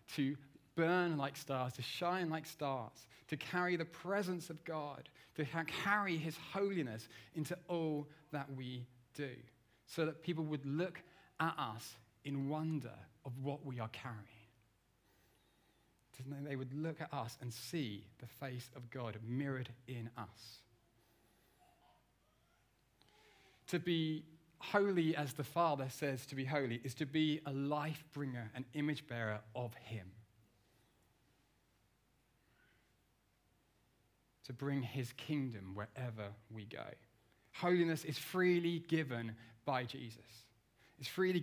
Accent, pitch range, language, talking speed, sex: British, 120-160 Hz, English, 125 wpm, male